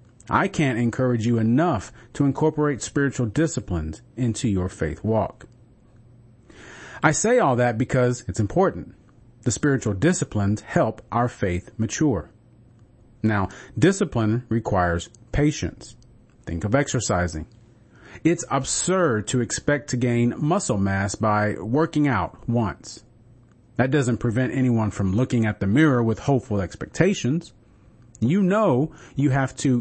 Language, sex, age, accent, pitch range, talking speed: English, male, 40-59, American, 110-135 Hz, 125 wpm